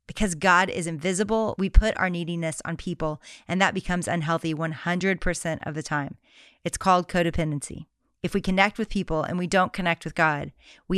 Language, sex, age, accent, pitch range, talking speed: English, female, 30-49, American, 165-195 Hz, 180 wpm